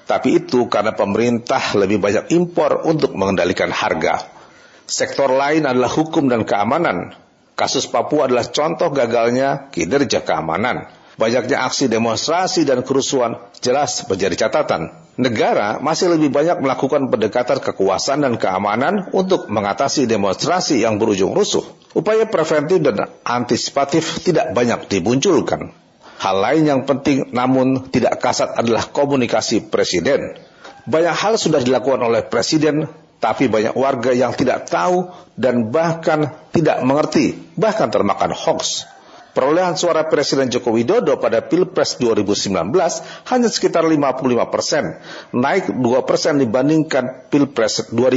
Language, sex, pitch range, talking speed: Indonesian, male, 125-165 Hz, 125 wpm